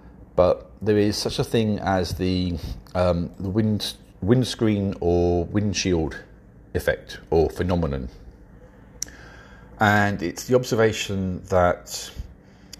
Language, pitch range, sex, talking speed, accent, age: English, 85-105 Hz, male, 100 wpm, British, 50-69